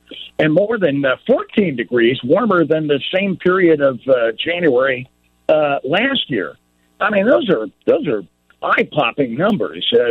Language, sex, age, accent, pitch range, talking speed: English, male, 60-79, American, 130-200 Hz, 155 wpm